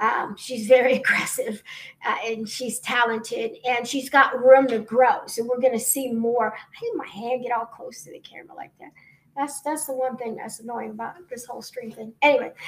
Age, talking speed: 50-69, 215 wpm